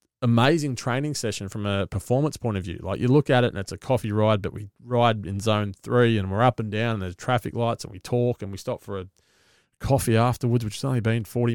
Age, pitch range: 20-39, 105-130 Hz